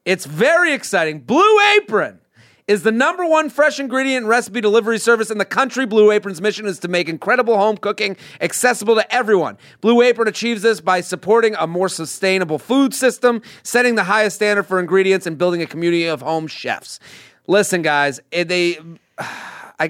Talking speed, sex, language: 170 wpm, male, English